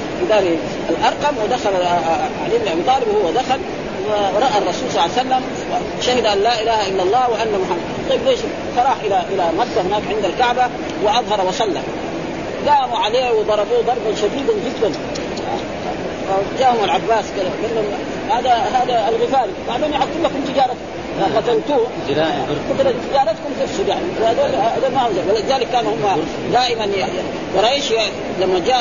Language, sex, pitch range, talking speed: Arabic, female, 220-290 Hz, 130 wpm